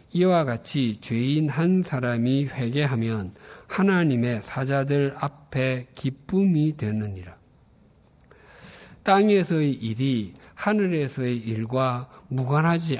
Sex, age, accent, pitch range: male, 50-69, native, 120-160 Hz